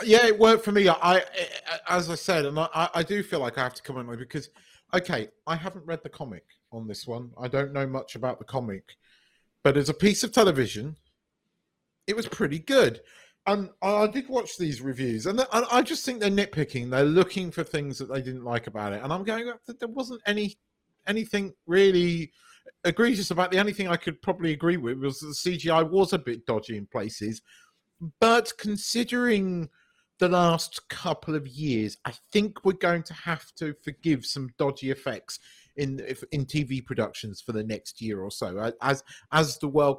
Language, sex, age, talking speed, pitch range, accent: English, male, 40-59, 200 wpm, 135-195 Hz, British